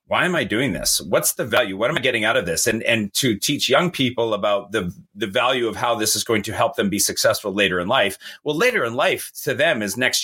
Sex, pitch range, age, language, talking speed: male, 95-125 Hz, 30-49, English, 270 wpm